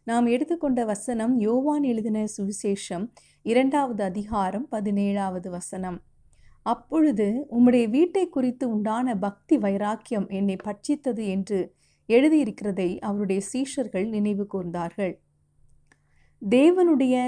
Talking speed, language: 85 wpm, Tamil